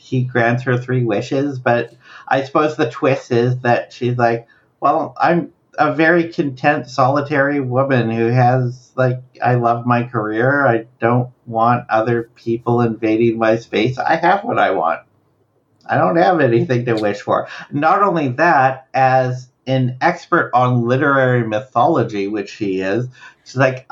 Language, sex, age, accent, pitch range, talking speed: English, male, 50-69, American, 115-145 Hz, 155 wpm